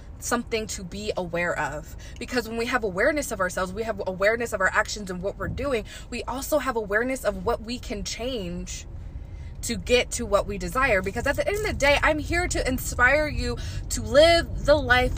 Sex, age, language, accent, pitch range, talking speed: female, 20-39, English, American, 200-245 Hz, 210 wpm